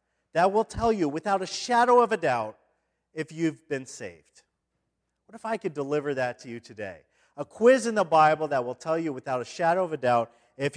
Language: English